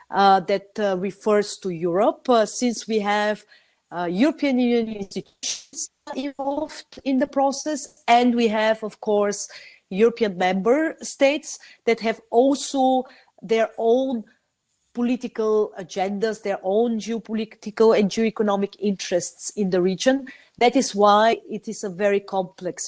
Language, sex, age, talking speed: English, female, 40-59, 130 wpm